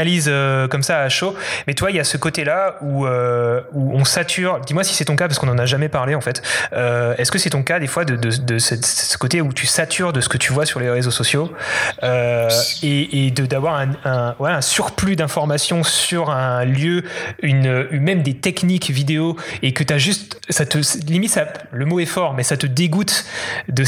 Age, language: 30-49, French